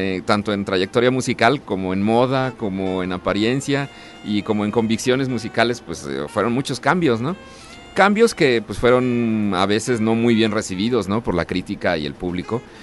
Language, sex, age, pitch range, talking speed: Spanish, male, 40-59, 90-120 Hz, 175 wpm